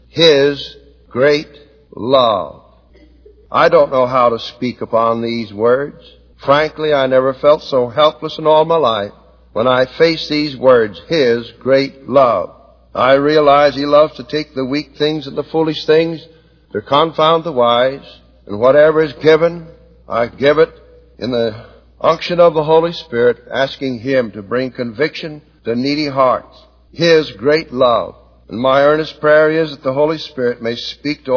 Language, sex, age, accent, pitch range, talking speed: English, male, 60-79, American, 130-155 Hz, 160 wpm